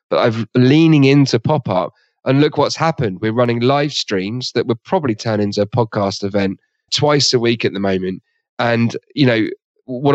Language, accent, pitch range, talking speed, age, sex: English, British, 110-135 Hz, 190 wpm, 30-49, male